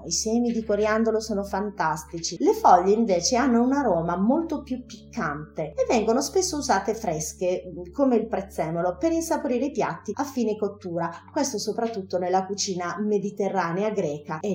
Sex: female